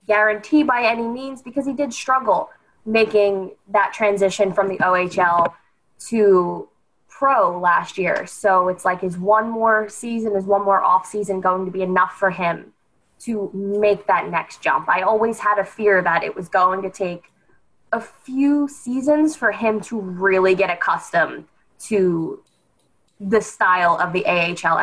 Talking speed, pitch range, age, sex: 160 wpm, 190-230 Hz, 20-39, female